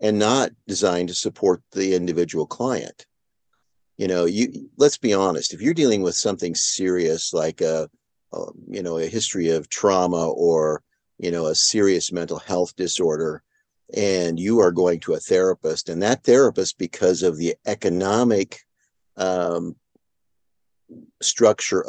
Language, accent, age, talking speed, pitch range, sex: English, American, 50-69, 145 wpm, 85-125 Hz, male